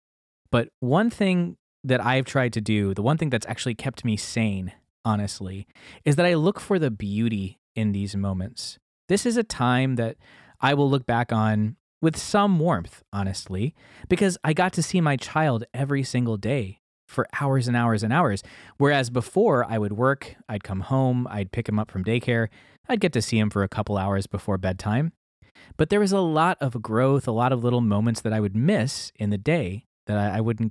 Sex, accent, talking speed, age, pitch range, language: male, American, 205 wpm, 20-39, 100-135 Hz, English